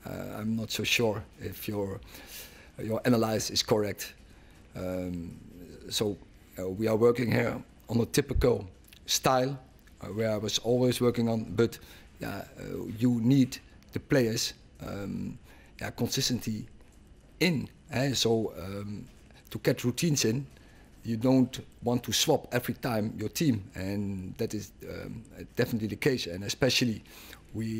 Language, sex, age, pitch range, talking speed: English, male, 50-69, 100-120 Hz, 145 wpm